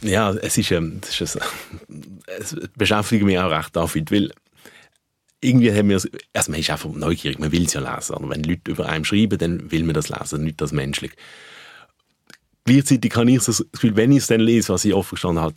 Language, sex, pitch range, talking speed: German, male, 85-110 Hz, 210 wpm